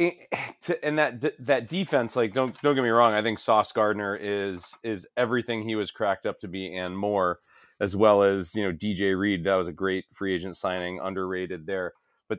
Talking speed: 205 wpm